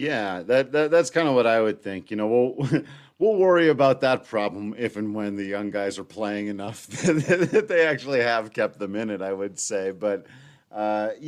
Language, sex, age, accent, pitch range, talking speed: English, male, 40-59, American, 95-130 Hz, 215 wpm